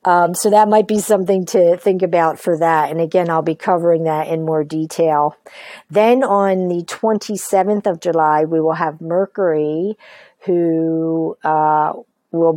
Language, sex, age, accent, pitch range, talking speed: English, female, 50-69, American, 160-190 Hz, 160 wpm